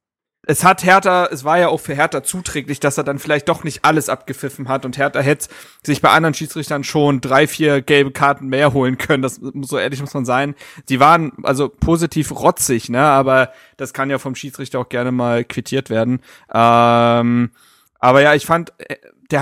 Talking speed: 200 wpm